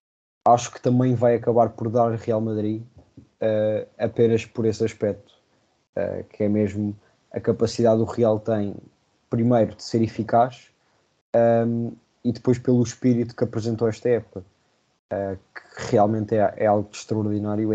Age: 20-39